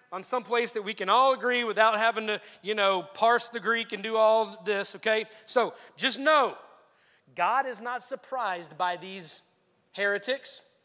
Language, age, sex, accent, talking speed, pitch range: English, 30-49, male, American, 170 wpm, 195-245 Hz